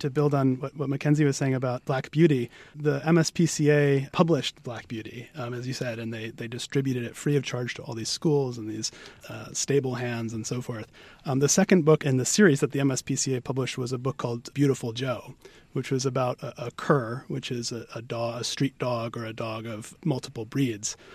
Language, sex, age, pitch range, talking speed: English, male, 30-49, 120-145 Hz, 220 wpm